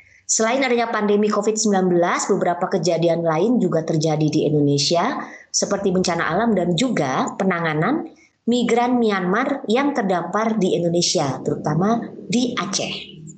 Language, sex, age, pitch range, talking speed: Indonesian, male, 20-39, 170-230 Hz, 115 wpm